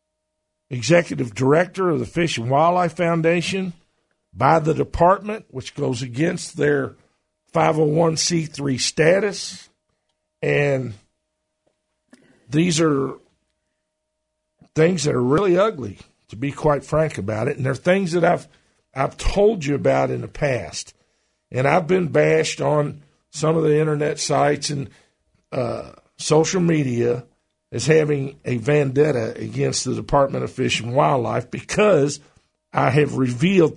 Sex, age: male, 50-69